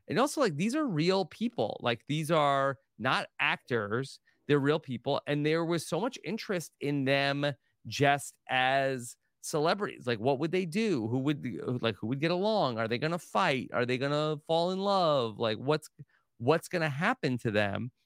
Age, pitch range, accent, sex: 30-49, 120-155 Hz, American, male